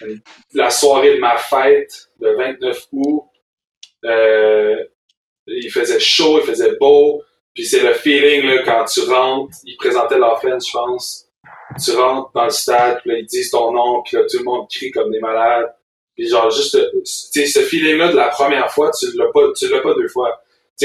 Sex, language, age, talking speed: male, French, 30-49, 195 wpm